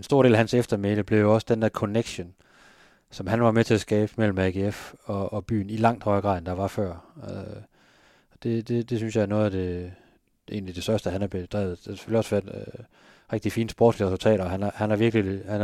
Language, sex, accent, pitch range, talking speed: Danish, male, native, 100-110 Hz, 230 wpm